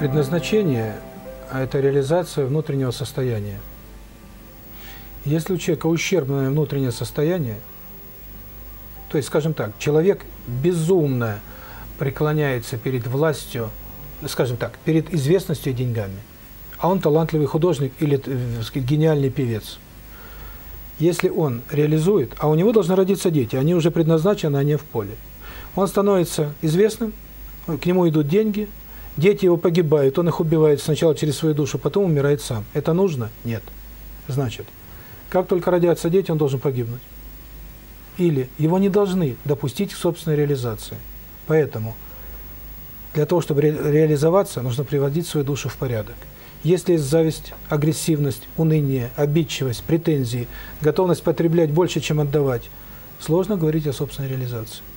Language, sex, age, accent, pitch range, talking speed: Russian, male, 40-59, native, 125-165 Hz, 130 wpm